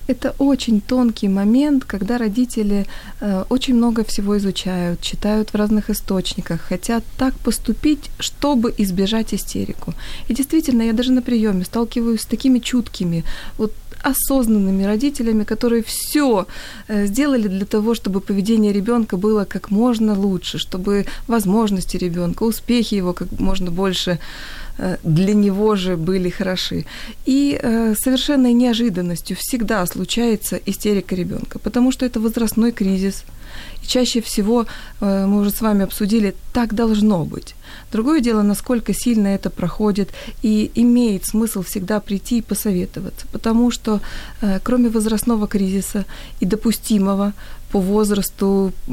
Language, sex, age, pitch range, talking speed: Ukrainian, female, 20-39, 195-235 Hz, 130 wpm